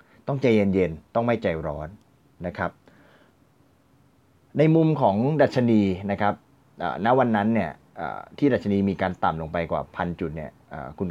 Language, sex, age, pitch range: Thai, male, 30-49, 90-120 Hz